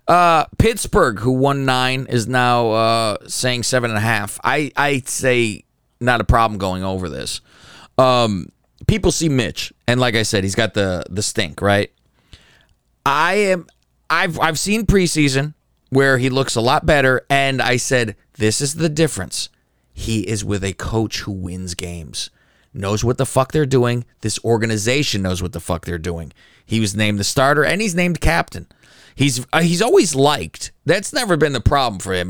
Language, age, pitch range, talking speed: English, 30-49, 100-135 Hz, 180 wpm